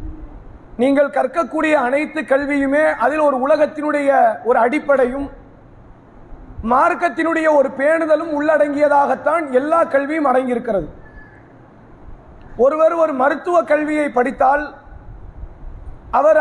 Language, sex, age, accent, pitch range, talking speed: English, male, 30-49, Indian, 275-320 Hz, 90 wpm